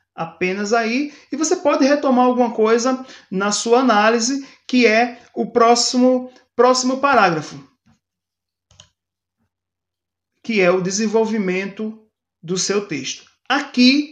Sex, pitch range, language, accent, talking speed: male, 185-245 Hz, Portuguese, Brazilian, 105 wpm